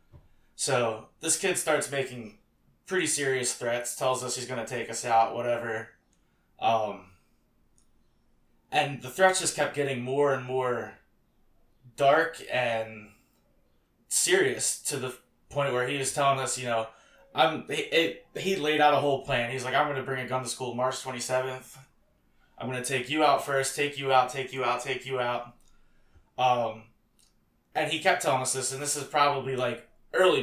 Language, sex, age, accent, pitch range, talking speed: English, male, 20-39, American, 120-140 Hz, 180 wpm